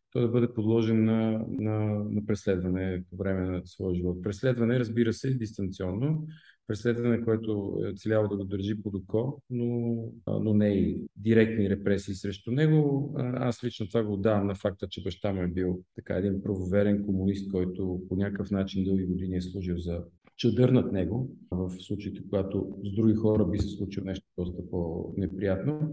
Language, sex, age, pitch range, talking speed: Bulgarian, male, 40-59, 95-120 Hz, 170 wpm